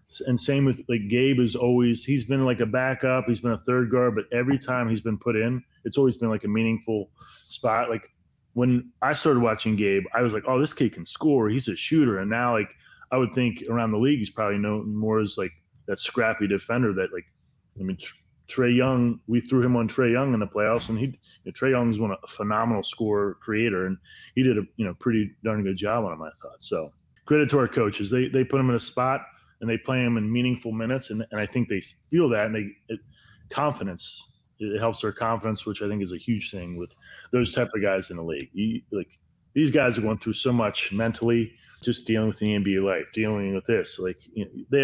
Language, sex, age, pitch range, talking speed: English, male, 30-49, 105-120 Hz, 240 wpm